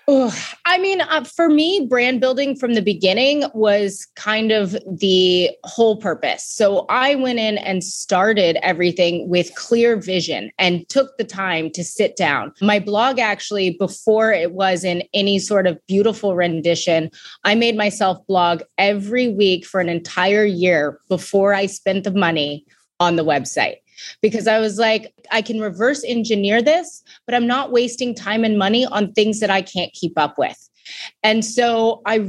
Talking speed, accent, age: 165 wpm, American, 20-39